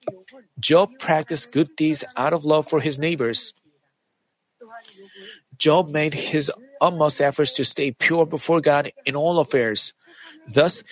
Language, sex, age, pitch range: Korean, male, 40-59, 150-220 Hz